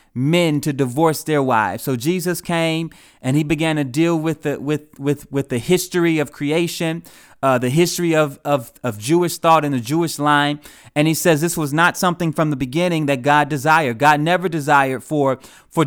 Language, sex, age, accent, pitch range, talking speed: English, male, 30-49, American, 145-175 Hz, 195 wpm